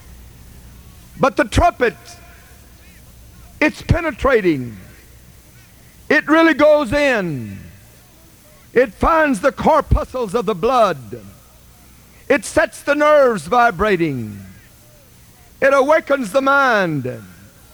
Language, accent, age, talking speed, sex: English, American, 50-69, 85 wpm, male